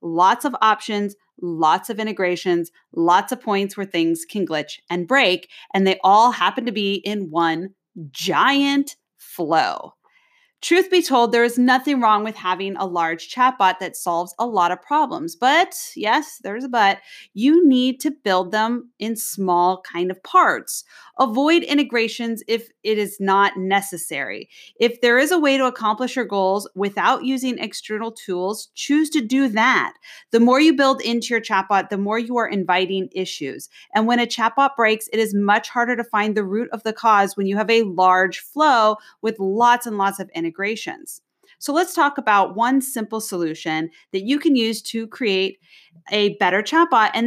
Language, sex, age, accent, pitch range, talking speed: English, female, 30-49, American, 195-255 Hz, 180 wpm